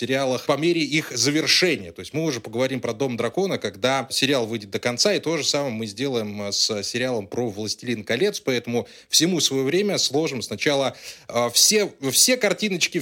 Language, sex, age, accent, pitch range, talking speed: Russian, male, 20-39, native, 130-180 Hz, 175 wpm